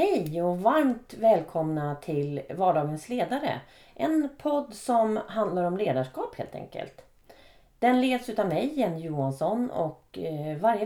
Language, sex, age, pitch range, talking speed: Swedish, female, 30-49, 145-210 Hz, 125 wpm